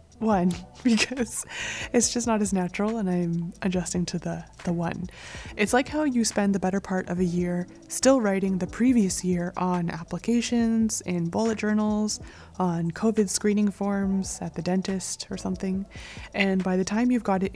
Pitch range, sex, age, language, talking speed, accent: 180-215 Hz, female, 20-39, English, 175 wpm, American